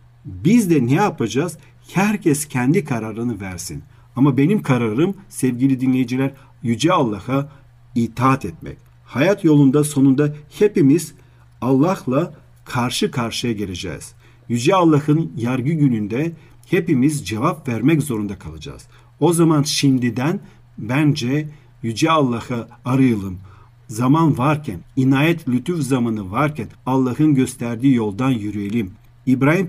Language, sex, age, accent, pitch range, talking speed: Turkish, male, 50-69, native, 120-150 Hz, 105 wpm